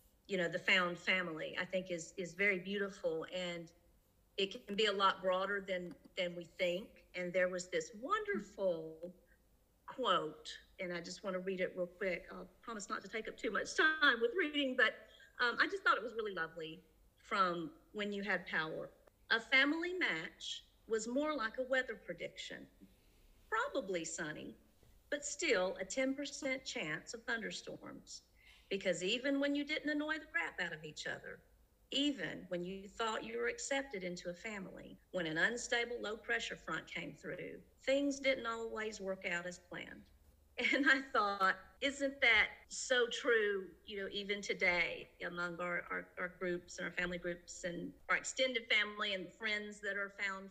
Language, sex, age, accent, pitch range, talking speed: English, female, 50-69, American, 180-260 Hz, 170 wpm